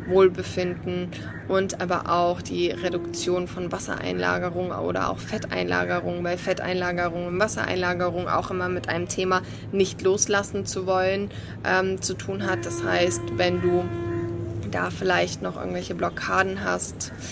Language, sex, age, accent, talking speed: German, female, 20-39, German, 130 wpm